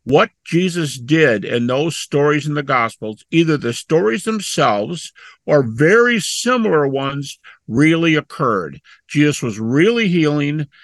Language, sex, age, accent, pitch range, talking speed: English, male, 50-69, American, 130-165 Hz, 125 wpm